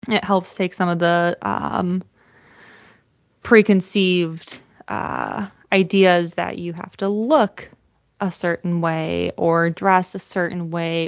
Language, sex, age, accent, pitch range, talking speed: English, female, 20-39, American, 165-200 Hz, 125 wpm